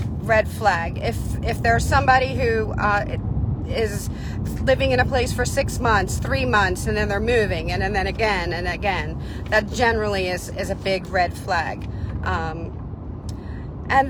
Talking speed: 160 wpm